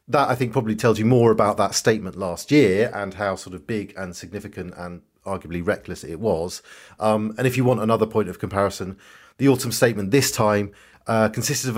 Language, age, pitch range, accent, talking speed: English, 40-59, 95-120 Hz, British, 210 wpm